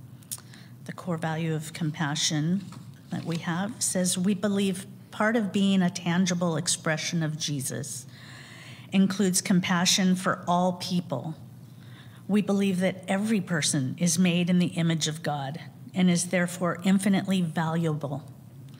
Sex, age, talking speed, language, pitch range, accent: female, 50-69, 130 wpm, English, 135-180 Hz, American